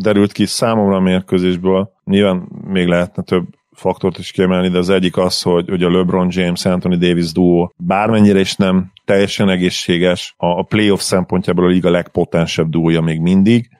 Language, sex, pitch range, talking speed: Hungarian, male, 90-110 Hz, 170 wpm